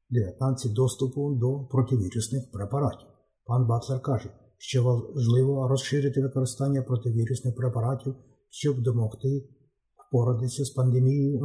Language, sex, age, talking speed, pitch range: Ukrainian, male, 50-69, 100 wpm, 120-135 Hz